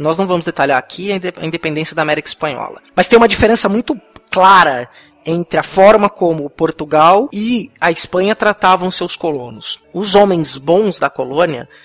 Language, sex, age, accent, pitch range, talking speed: Portuguese, male, 20-39, Brazilian, 150-210 Hz, 160 wpm